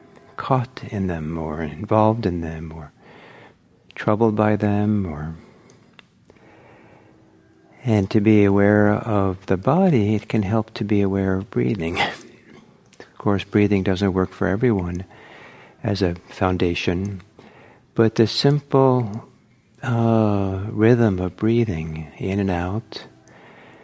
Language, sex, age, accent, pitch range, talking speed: English, male, 50-69, American, 95-115 Hz, 120 wpm